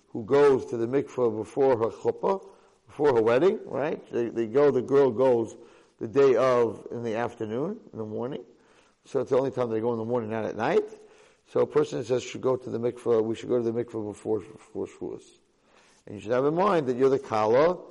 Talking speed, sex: 225 wpm, male